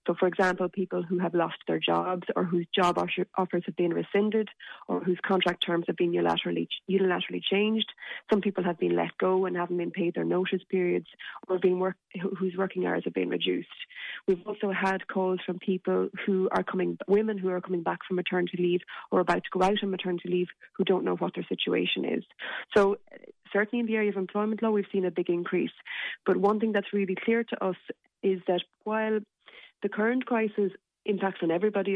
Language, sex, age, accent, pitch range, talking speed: English, female, 20-39, Irish, 180-200 Hz, 205 wpm